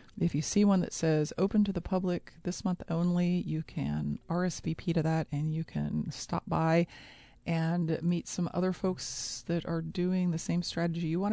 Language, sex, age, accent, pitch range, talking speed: English, female, 40-59, American, 155-185 Hz, 190 wpm